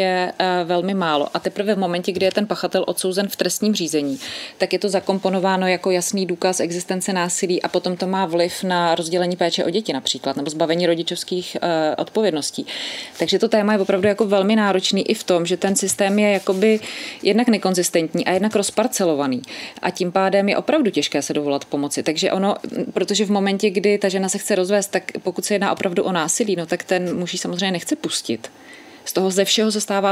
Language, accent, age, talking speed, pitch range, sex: Czech, native, 30-49, 200 wpm, 175-195 Hz, female